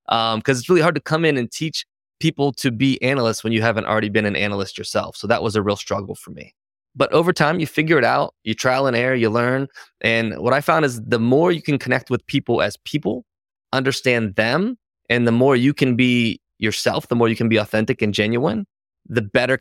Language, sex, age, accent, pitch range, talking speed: English, male, 20-39, American, 110-130 Hz, 235 wpm